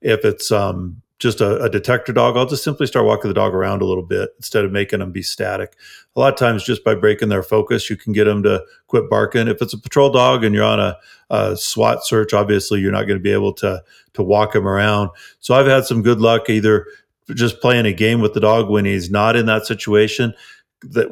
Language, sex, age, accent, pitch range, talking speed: English, male, 40-59, American, 105-115 Hz, 245 wpm